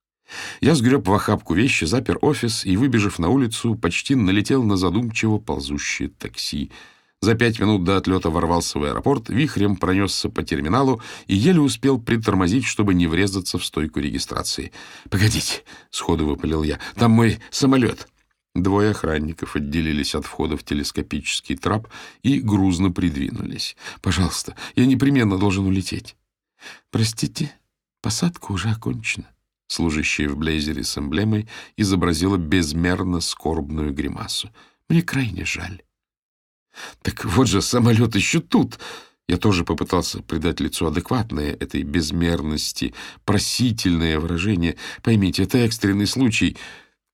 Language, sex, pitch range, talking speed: Russian, male, 85-115 Hz, 125 wpm